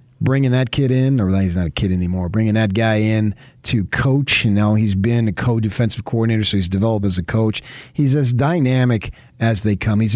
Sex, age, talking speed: male, 40-59, 205 wpm